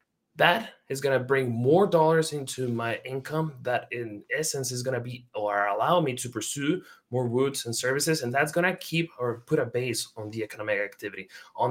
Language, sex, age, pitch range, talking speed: English, male, 20-39, 115-135 Hz, 190 wpm